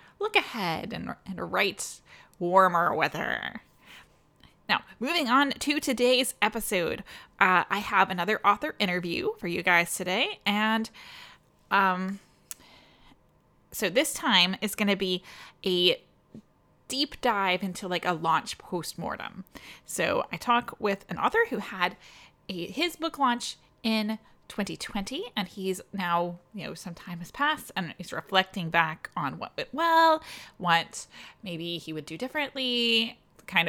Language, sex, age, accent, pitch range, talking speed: English, female, 20-39, American, 175-245 Hz, 140 wpm